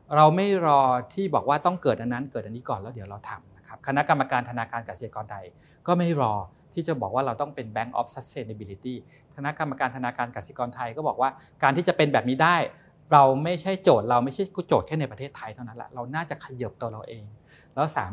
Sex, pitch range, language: male, 115-150 Hz, English